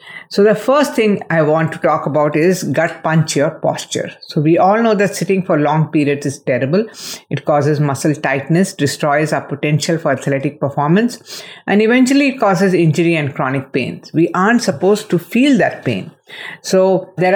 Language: English